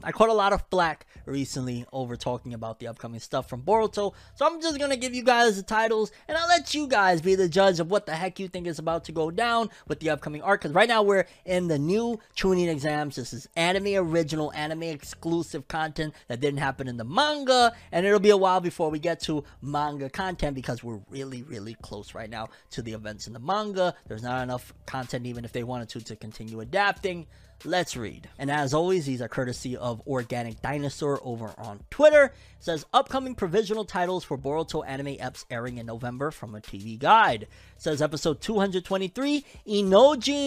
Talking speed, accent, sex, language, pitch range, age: 205 wpm, American, male, English, 125-205 Hz, 20-39